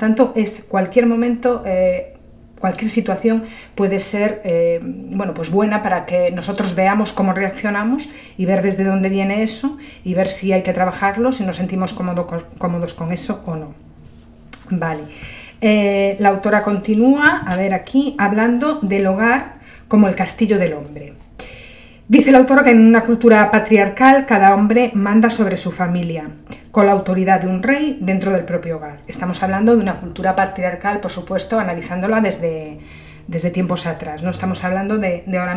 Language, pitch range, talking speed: Spanish, 180-225 Hz, 165 wpm